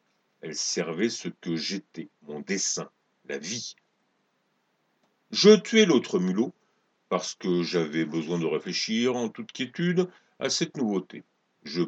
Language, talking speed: French, 130 wpm